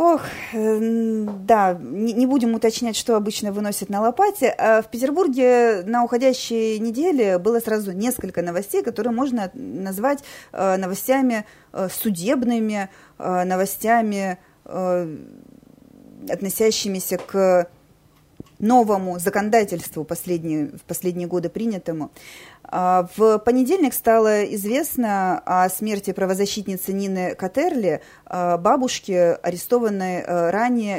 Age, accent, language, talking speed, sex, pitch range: 30-49, native, Russian, 90 wpm, female, 185-230 Hz